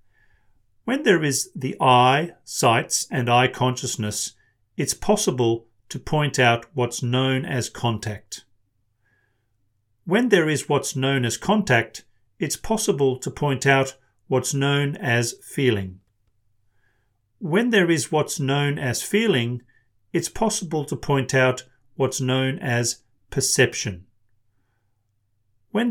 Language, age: English, 40-59